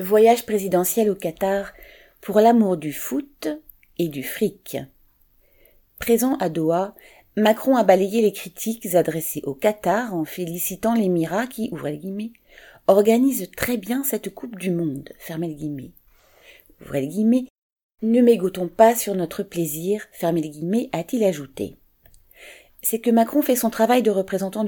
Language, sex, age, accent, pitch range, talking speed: French, female, 40-59, French, 165-220 Hz, 125 wpm